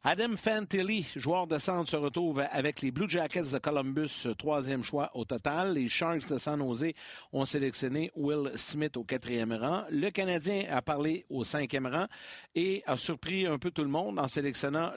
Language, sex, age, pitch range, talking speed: French, male, 60-79, 140-185 Hz, 185 wpm